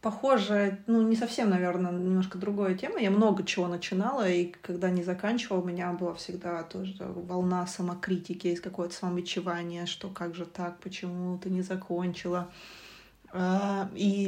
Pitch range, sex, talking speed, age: 180-200 Hz, female, 145 wpm, 20-39